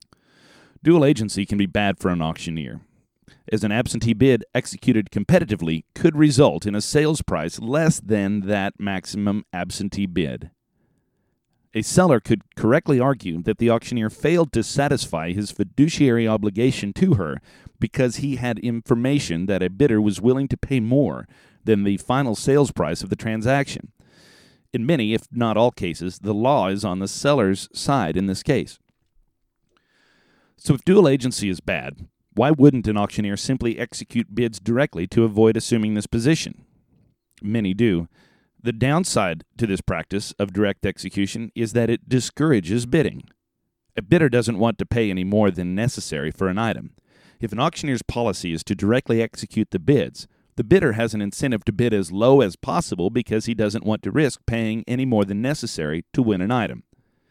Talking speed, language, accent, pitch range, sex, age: 170 wpm, English, American, 100-130 Hz, male, 40-59